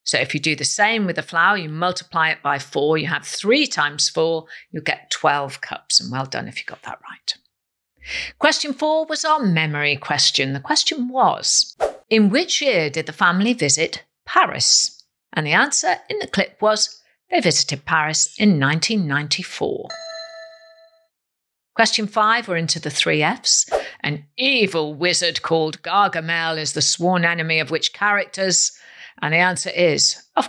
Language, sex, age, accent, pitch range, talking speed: English, female, 50-69, British, 155-225 Hz, 165 wpm